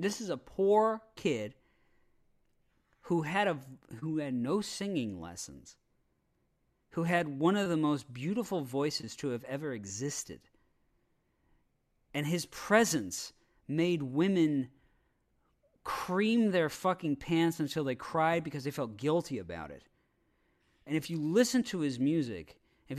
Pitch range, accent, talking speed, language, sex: 125-170 Hz, American, 135 wpm, English, male